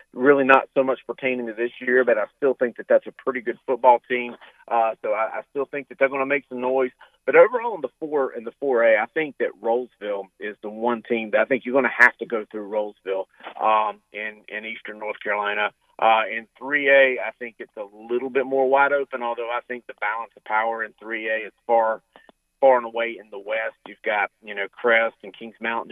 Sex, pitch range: male, 110-130 Hz